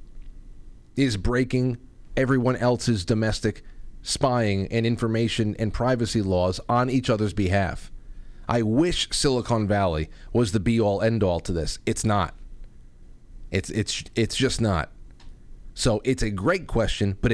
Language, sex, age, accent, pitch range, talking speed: English, male, 30-49, American, 95-120 Hz, 130 wpm